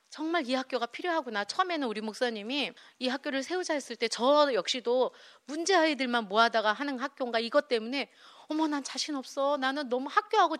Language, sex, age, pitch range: Korean, female, 40-59, 210-280 Hz